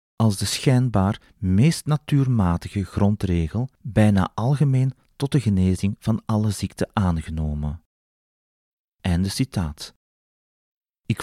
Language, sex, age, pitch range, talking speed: Dutch, male, 40-59, 90-120 Hz, 95 wpm